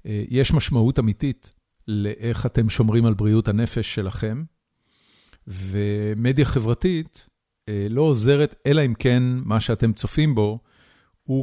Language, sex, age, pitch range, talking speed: Hebrew, male, 40-59, 105-125 Hz, 115 wpm